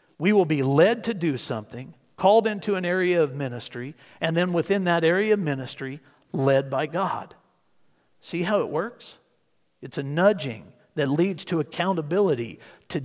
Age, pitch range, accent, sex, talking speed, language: 50-69, 125-175 Hz, American, male, 160 wpm, English